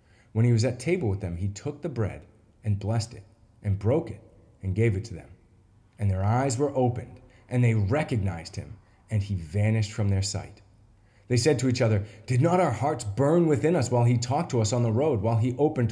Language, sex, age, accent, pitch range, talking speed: English, male, 30-49, American, 105-125 Hz, 225 wpm